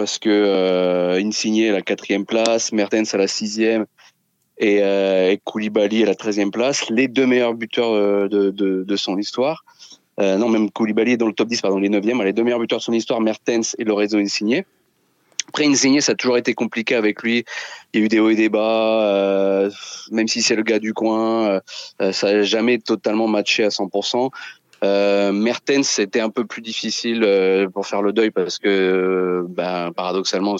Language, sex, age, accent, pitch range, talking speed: French, male, 30-49, French, 90-110 Hz, 210 wpm